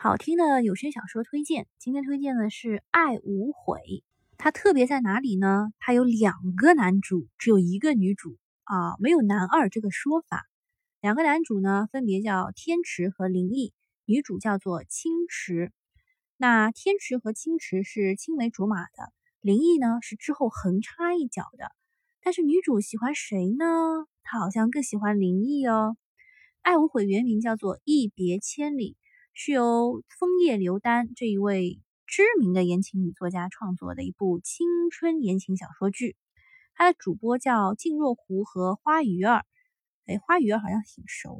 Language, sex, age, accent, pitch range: Chinese, female, 20-39, native, 195-295 Hz